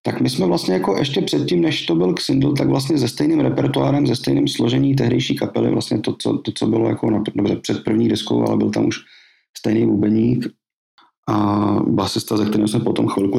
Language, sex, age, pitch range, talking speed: Czech, male, 40-59, 100-145 Hz, 210 wpm